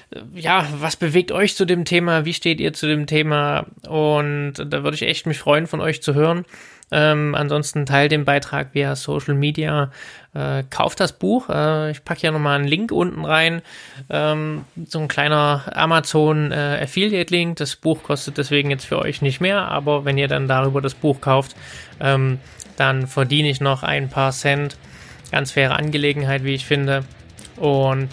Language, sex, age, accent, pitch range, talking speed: German, male, 20-39, German, 140-155 Hz, 180 wpm